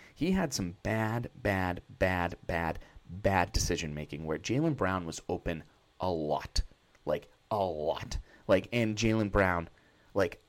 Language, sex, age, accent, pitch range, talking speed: English, male, 30-49, American, 95-150 Hz, 145 wpm